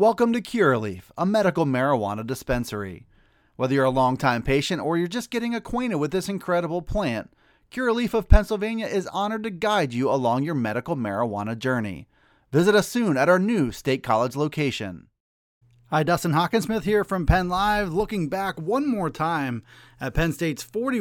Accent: American